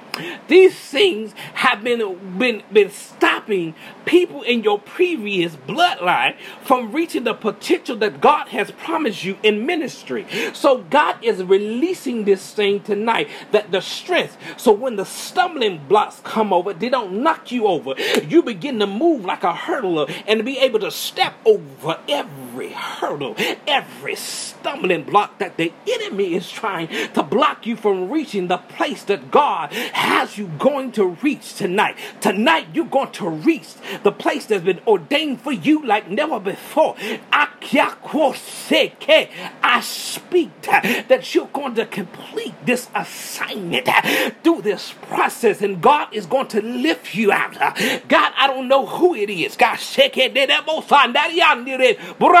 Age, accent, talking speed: 40-59, American, 150 wpm